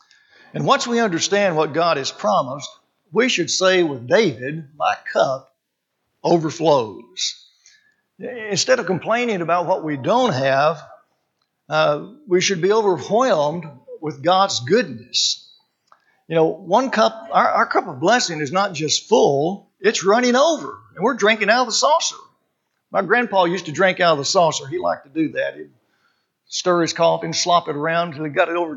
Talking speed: 170 wpm